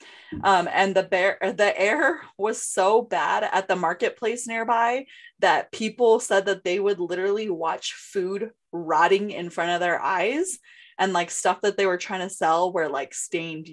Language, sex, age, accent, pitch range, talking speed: English, female, 20-39, American, 175-220 Hz, 175 wpm